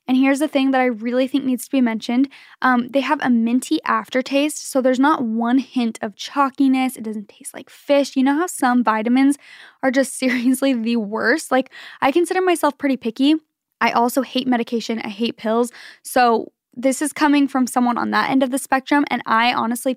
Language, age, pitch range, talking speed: English, 10-29, 235-275 Hz, 205 wpm